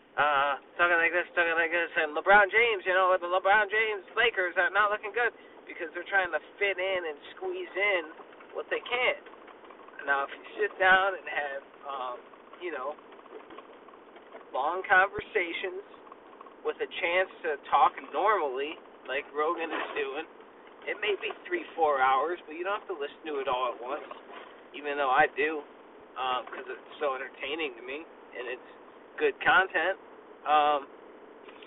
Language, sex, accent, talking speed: English, male, American, 165 wpm